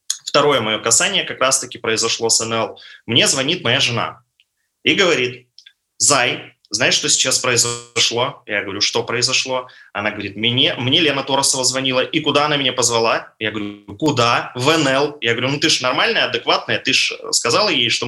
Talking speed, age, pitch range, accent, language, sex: 175 wpm, 20-39, 125-175 Hz, native, Russian, male